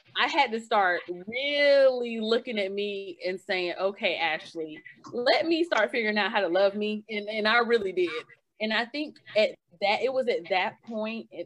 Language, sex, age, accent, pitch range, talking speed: English, female, 30-49, American, 195-285 Hz, 190 wpm